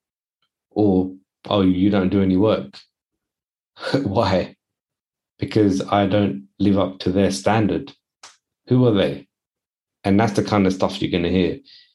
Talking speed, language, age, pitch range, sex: 145 wpm, English, 30-49, 95-110 Hz, male